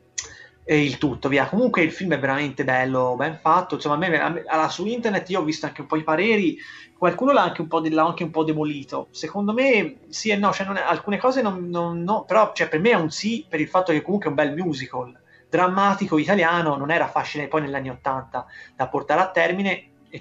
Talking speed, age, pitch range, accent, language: 240 wpm, 30-49, 145-180 Hz, native, Italian